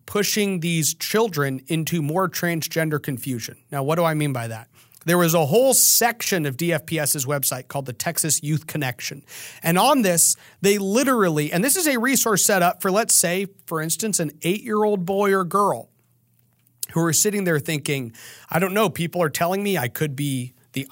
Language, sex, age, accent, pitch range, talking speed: English, male, 40-59, American, 140-205 Hz, 185 wpm